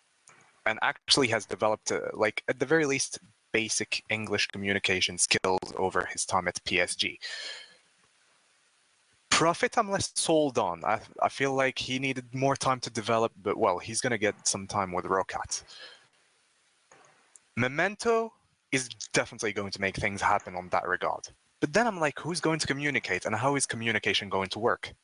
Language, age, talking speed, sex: English, 20-39, 165 wpm, male